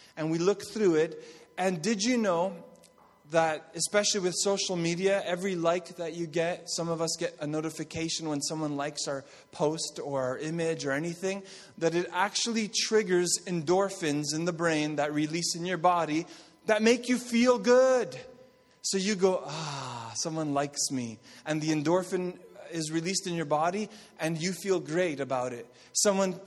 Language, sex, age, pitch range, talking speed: English, male, 30-49, 150-180 Hz, 170 wpm